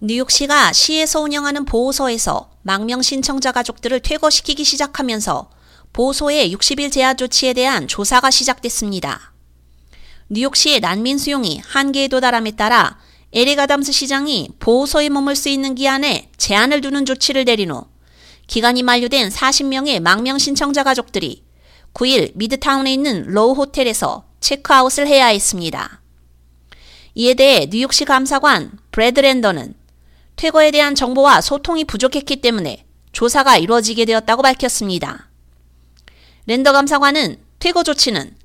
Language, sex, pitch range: Korean, female, 210-275 Hz